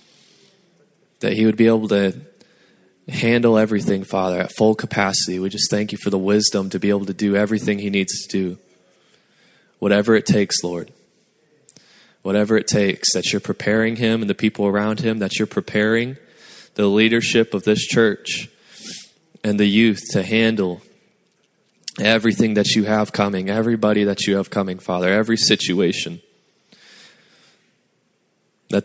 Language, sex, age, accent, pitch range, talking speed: English, male, 20-39, American, 100-115 Hz, 150 wpm